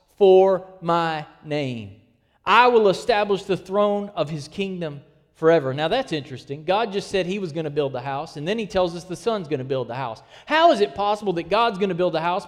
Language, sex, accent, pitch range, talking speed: English, male, American, 150-210 Hz, 230 wpm